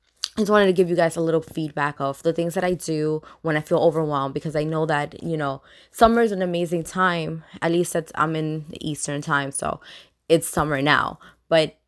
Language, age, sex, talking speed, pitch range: English, 20-39, female, 220 wpm, 145-170 Hz